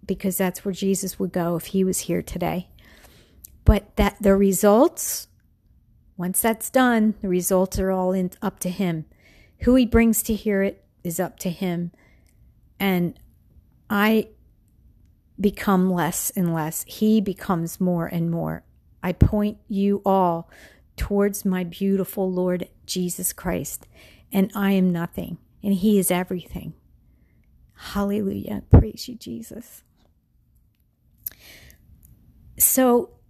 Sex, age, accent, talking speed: female, 50-69, American, 125 wpm